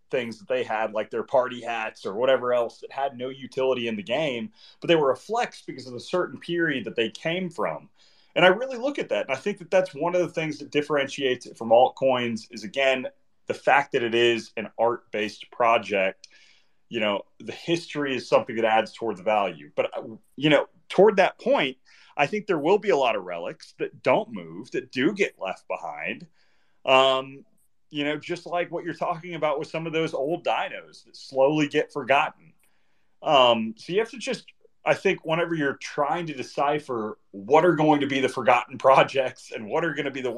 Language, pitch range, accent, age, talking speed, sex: English, 115-170 Hz, American, 30-49, 215 wpm, male